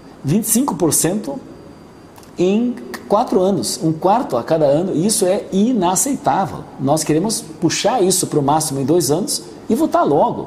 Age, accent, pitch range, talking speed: 50-69, Brazilian, 140-175 Hz, 150 wpm